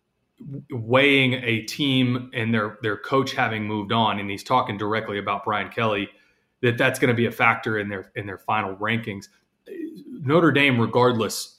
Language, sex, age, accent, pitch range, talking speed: English, male, 30-49, American, 110-130 Hz, 170 wpm